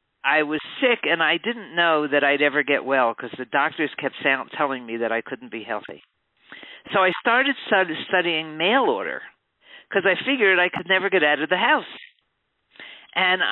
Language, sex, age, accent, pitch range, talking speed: English, male, 50-69, American, 145-195 Hz, 180 wpm